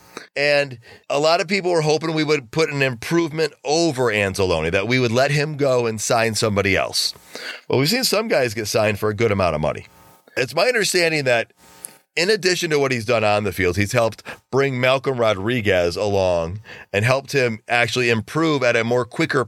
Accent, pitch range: American, 110-150 Hz